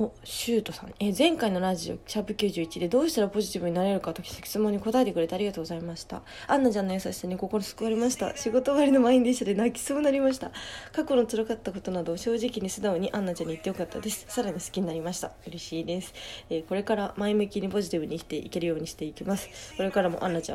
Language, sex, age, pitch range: Japanese, female, 20-39, 175-230 Hz